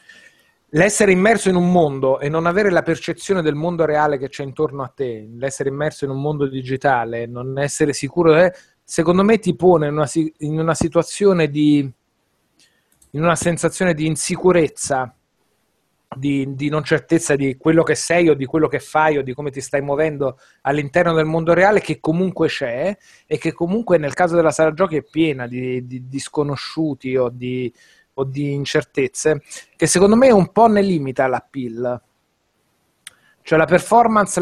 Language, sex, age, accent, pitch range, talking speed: Italian, male, 30-49, native, 140-175 Hz, 170 wpm